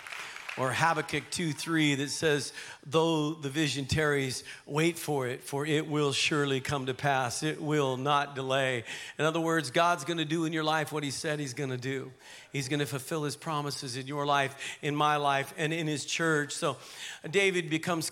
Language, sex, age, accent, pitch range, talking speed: English, male, 50-69, American, 145-170 Hz, 190 wpm